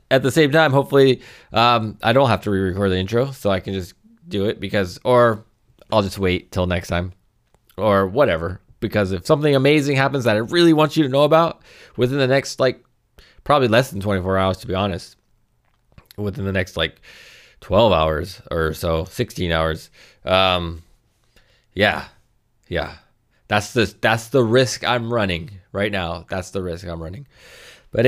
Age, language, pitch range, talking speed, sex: 20-39, English, 95-120 Hz, 175 wpm, male